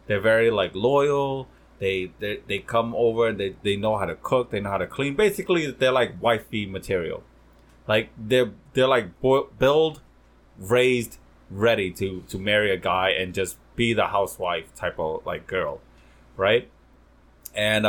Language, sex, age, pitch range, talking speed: English, male, 20-39, 95-130 Hz, 165 wpm